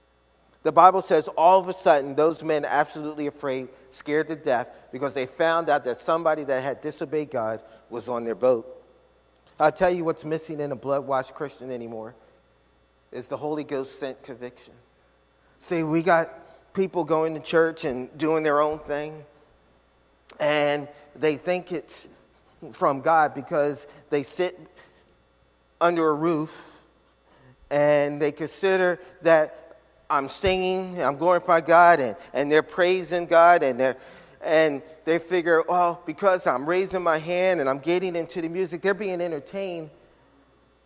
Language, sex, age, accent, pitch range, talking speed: English, male, 40-59, American, 130-175 Hz, 155 wpm